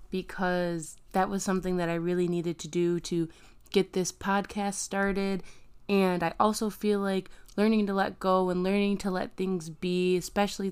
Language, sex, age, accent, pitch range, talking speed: English, female, 20-39, American, 170-195 Hz, 175 wpm